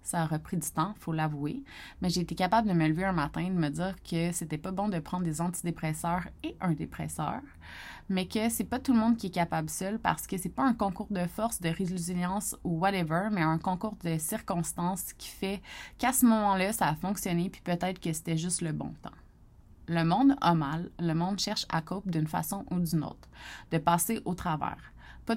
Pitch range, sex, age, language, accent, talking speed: 165-190 Hz, female, 30-49, French, Canadian, 225 wpm